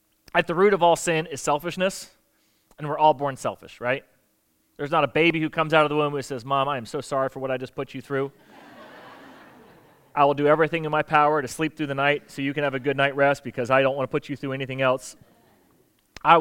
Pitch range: 145-180 Hz